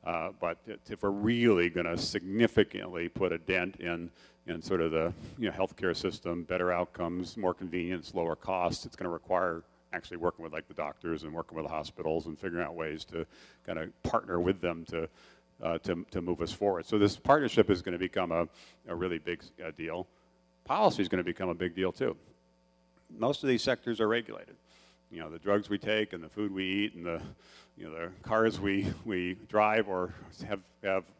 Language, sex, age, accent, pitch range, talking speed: English, male, 50-69, American, 85-105 Hz, 210 wpm